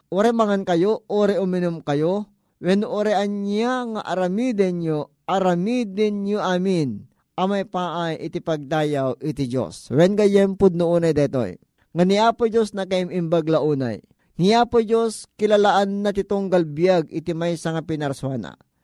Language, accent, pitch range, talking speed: Filipino, native, 160-200 Hz, 135 wpm